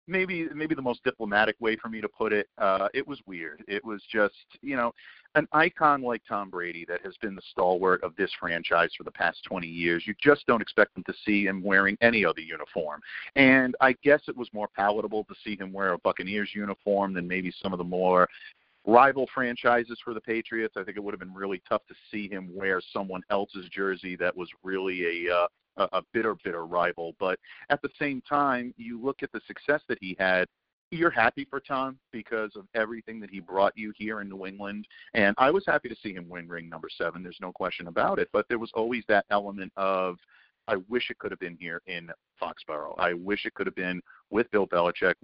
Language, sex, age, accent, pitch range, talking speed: English, male, 50-69, American, 90-120 Hz, 225 wpm